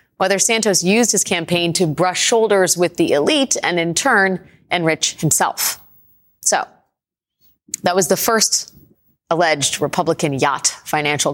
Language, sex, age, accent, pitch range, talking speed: English, female, 30-49, American, 155-190 Hz, 130 wpm